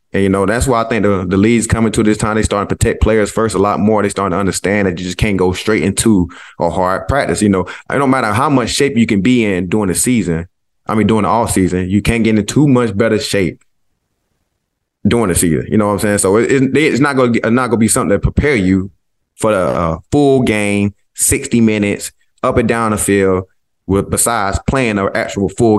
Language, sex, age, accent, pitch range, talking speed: English, male, 20-39, American, 95-120 Hz, 240 wpm